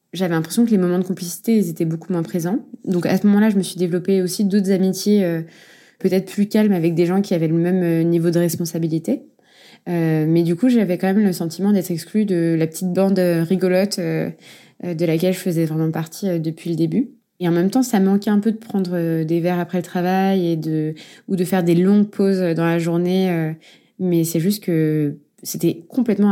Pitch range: 165-195 Hz